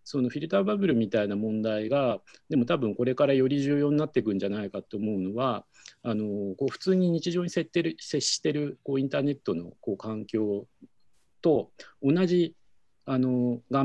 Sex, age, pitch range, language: male, 50-69, 105-140 Hz, Japanese